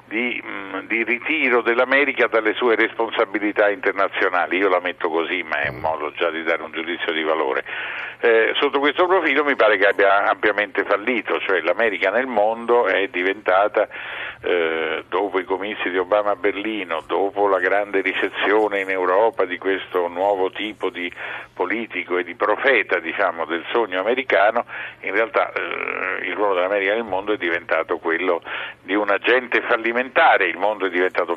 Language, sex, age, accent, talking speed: Italian, male, 50-69, native, 165 wpm